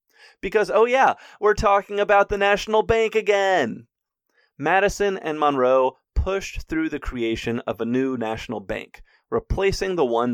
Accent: American